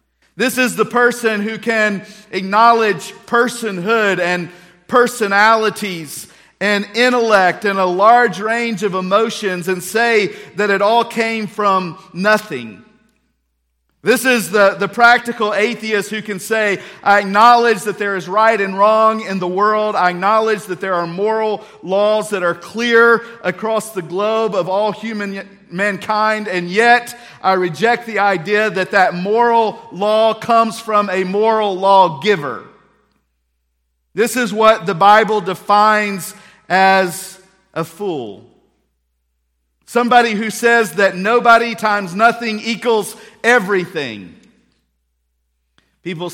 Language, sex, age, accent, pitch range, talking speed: English, male, 50-69, American, 180-220 Hz, 125 wpm